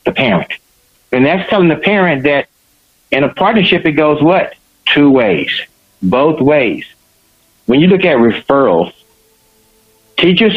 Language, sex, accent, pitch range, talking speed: English, male, American, 130-180 Hz, 135 wpm